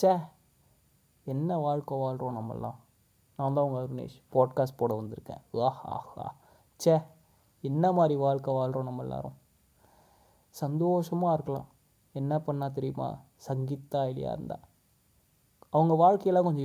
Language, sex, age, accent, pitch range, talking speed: Tamil, male, 20-39, native, 130-150 Hz, 110 wpm